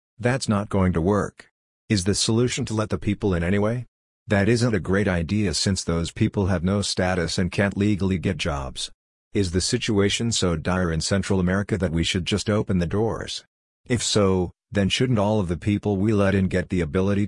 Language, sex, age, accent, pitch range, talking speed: English, male, 50-69, American, 90-105 Hz, 205 wpm